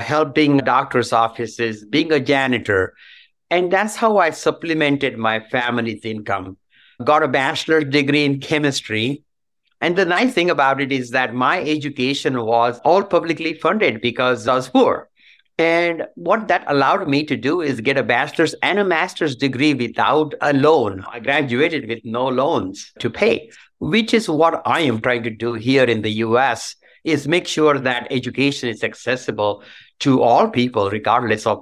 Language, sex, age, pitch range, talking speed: English, male, 60-79, 115-150 Hz, 165 wpm